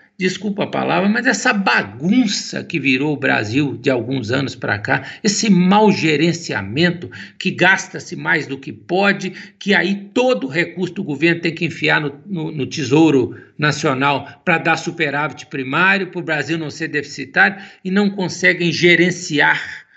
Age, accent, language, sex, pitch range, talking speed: 60-79, Brazilian, Portuguese, male, 150-200 Hz, 155 wpm